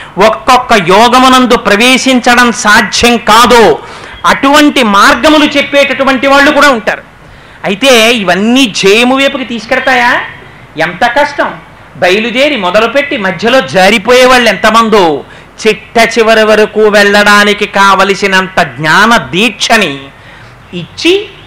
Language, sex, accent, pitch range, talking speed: Telugu, male, native, 195-265 Hz, 85 wpm